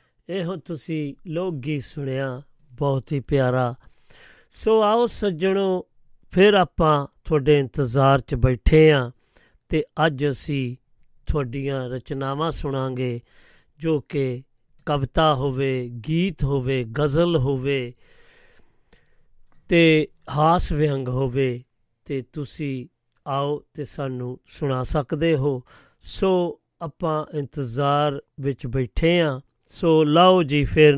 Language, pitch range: Punjabi, 135-160 Hz